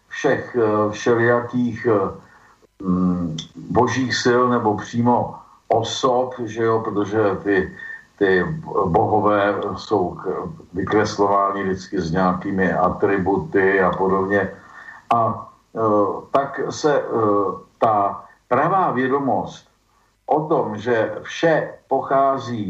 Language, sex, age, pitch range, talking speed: Slovak, male, 50-69, 100-125 Hz, 95 wpm